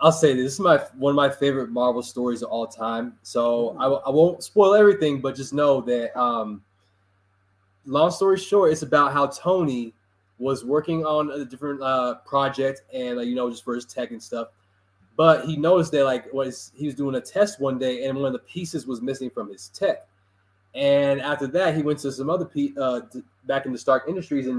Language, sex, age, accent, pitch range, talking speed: English, male, 20-39, American, 115-145 Hz, 215 wpm